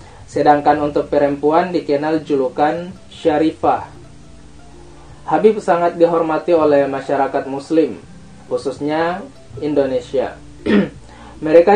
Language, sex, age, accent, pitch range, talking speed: Indonesian, male, 20-39, native, 130-160 Hz, 75 wpm